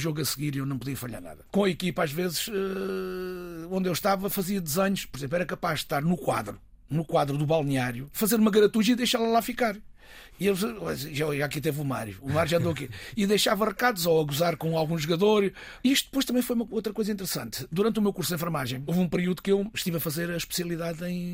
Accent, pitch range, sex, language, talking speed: Portuguese, 155-210 Hz, male, Portuguese, 235 wpm